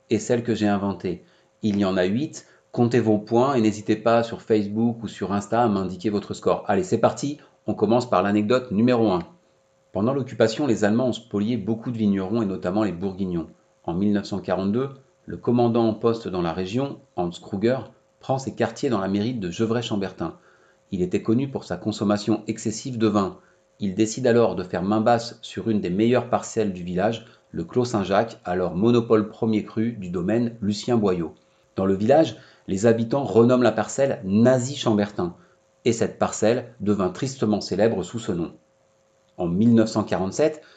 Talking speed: 175 wpm